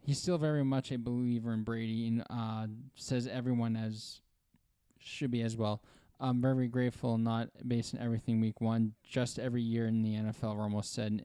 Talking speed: 180 wpm